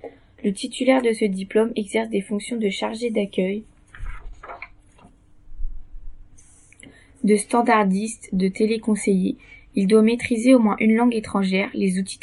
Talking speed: 125 wpm